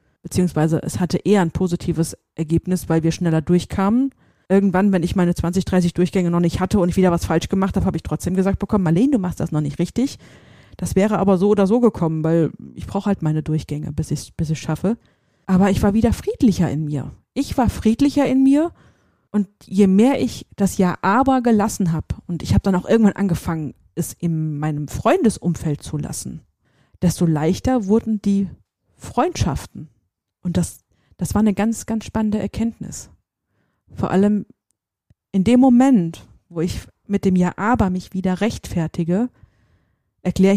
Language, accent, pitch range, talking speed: German, German, 160-205 Hz, 175 wpm